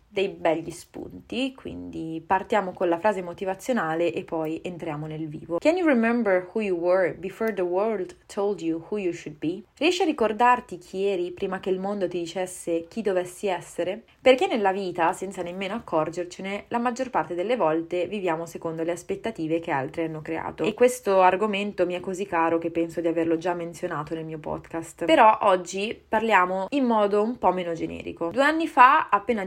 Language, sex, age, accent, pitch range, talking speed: Italian, female, 20-39, native, 170-210 Hz, 155 wpm